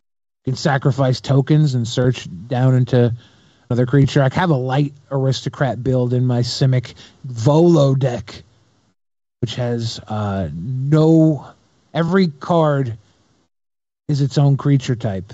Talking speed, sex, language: 120 wpm, male, English